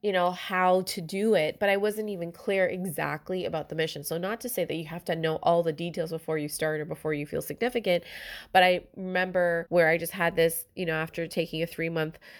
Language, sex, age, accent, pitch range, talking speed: English, female, 20-39, American, 160-185 Hz, 240 wpm